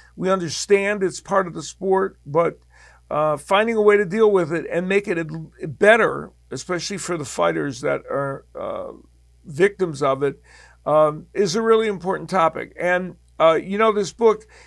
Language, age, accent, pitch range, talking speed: English, 50-69, American, 155-195 Hz, 170 wpm